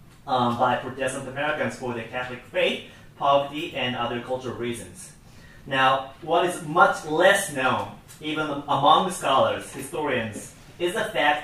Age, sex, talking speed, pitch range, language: 30-49, male, 135 wpm, 125-150 Hz, English